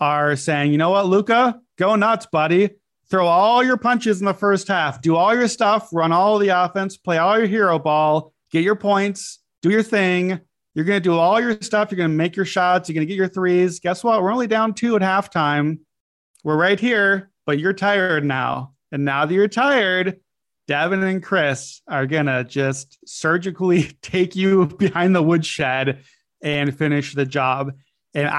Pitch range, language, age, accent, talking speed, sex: 145-185 Hz, English, 30-49, American, 195 wpm, male